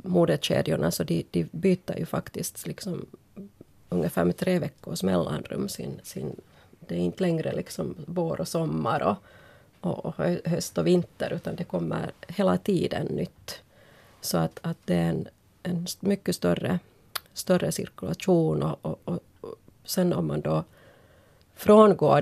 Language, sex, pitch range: Finnish, female, 145-180 Hz